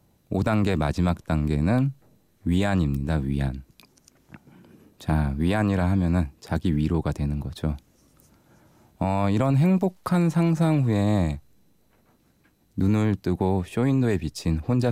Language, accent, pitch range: Korean, native, 75-110 Hz